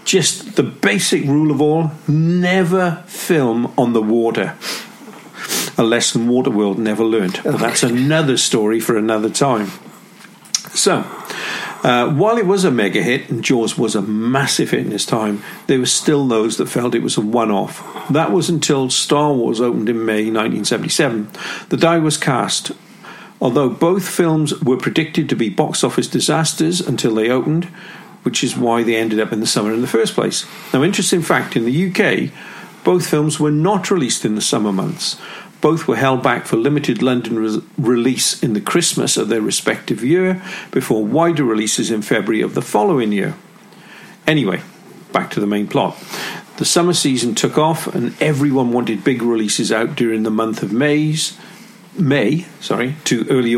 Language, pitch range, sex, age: English, 115-165 Hz, male, 50-69